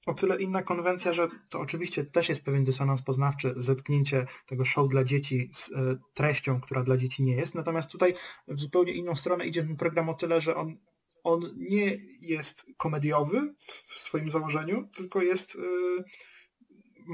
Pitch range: 135-170 Hz